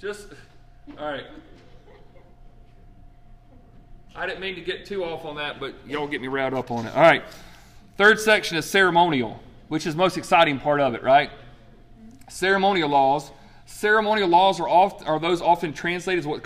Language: English